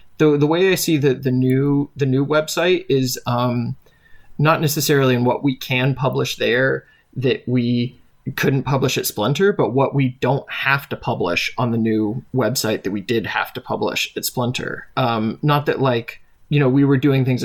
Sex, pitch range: male, 120-140 Hz